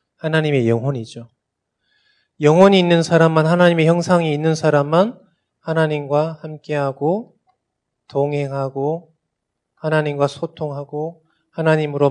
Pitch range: 135-175 Hz